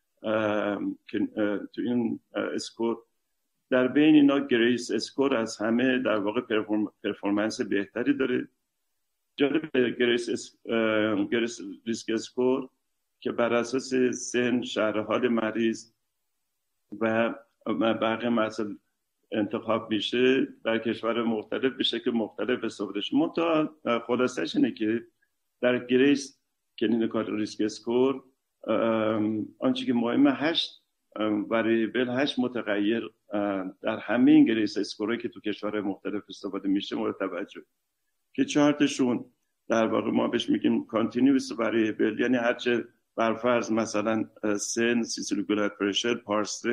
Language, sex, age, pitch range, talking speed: Persian, male, 50-69, 110-130 Hz, 110 wpm